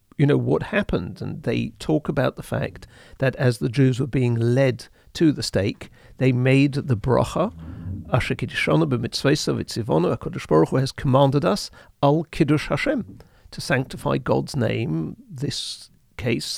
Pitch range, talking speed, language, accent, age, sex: 115-145 Hz, 145 wpm, English, British, 50-69, male